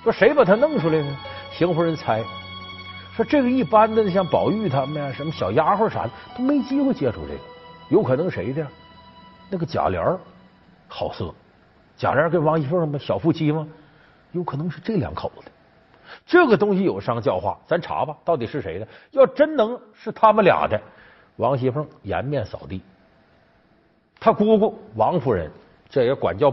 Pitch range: 125-205 Hz